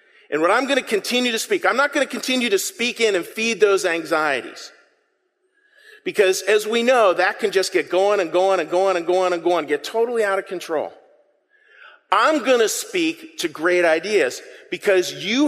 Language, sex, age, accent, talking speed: English, male, 40-59, American, 200 wpm